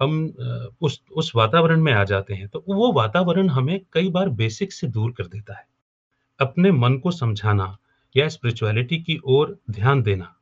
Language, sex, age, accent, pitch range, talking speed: Hindi, male, 40-59, native, 115-175 Hz, 175 wpm